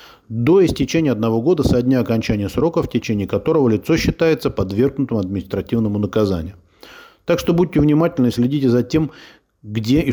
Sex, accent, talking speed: male, native, 150 wpm